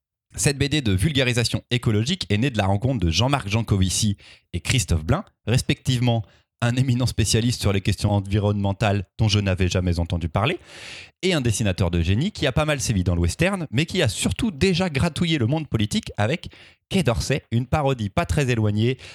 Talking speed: 185 wpm